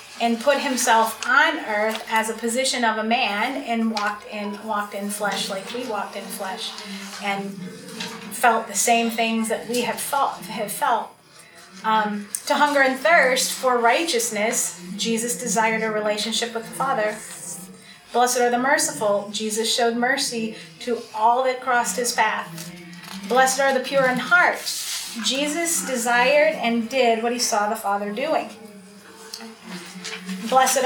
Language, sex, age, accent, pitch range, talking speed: English, female, 30-49, American, 210-255 Hz, 150 wpm